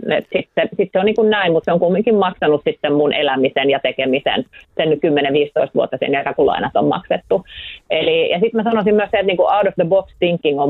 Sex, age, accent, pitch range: female, 30-49, native, 150-190 Hz